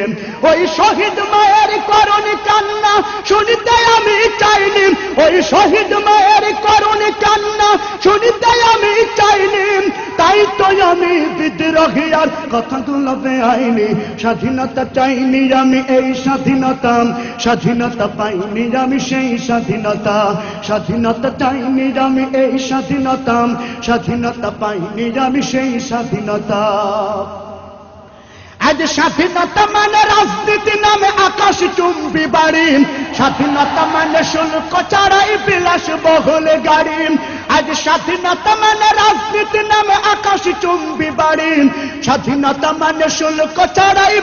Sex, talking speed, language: male, 35 wpm, English